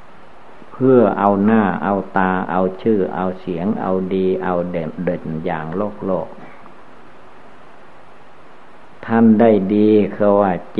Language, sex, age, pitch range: Thai, male, 60-79, 90-105 Hz